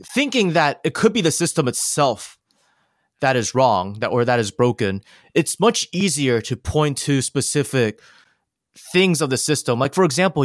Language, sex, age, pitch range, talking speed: English, male, 20-39, 125-155 Hz, 170 wpm